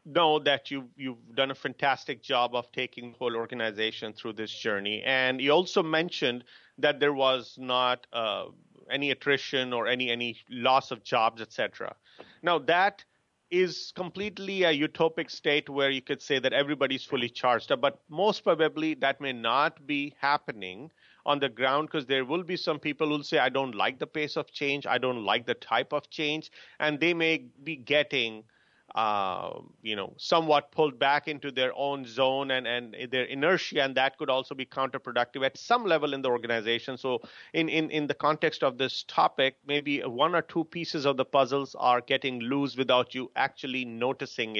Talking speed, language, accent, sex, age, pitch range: 190 wpm, English, Indian, male, 40-59, 125-155 Hz